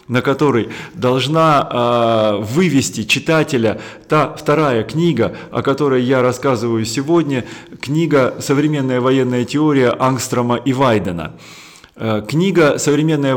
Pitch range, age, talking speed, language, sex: 120-145 Hz, 30-49, 100 wpm, Russian, male